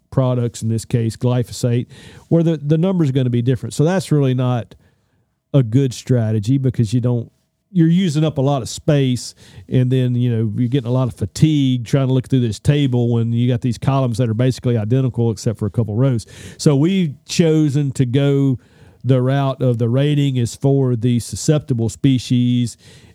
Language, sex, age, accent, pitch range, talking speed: English, male, 50-69, American, 115-135 Hz, 195 wpm